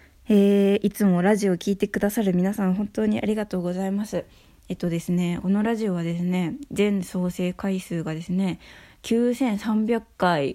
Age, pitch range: 20-39, 165-205 Hz